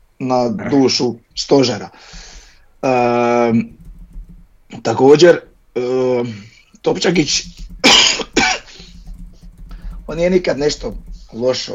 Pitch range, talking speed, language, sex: 125-165 Hz, 60 wpm, Croatian, male